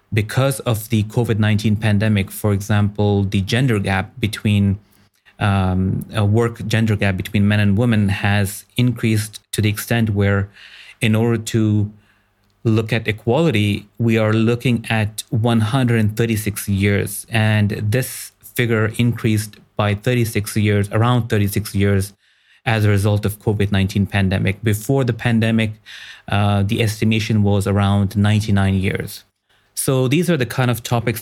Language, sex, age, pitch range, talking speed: English, male, 30-49, 100-115 Hz, 135 wpm